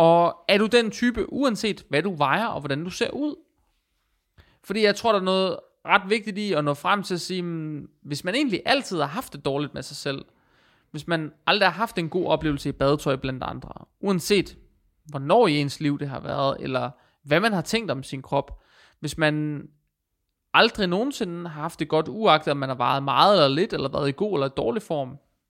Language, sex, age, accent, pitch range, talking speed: Danish, male, 30-49, native, 140-185 Hz, 220 wpm